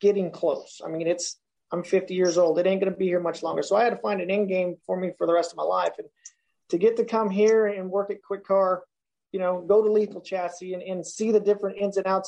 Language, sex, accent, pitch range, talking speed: English, male, American, 180-210 Hz, 285 wpm